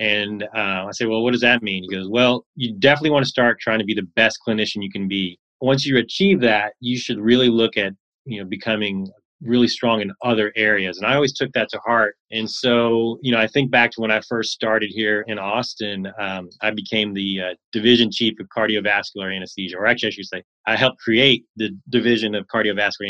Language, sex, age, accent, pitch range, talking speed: English, male, 20-39, American, 100-115 Hz, 225 wpm